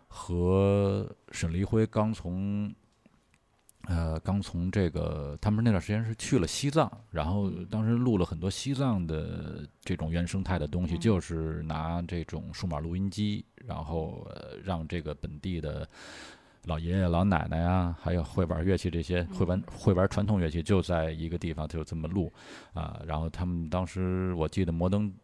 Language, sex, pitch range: Chinese, male, 80-100 Hz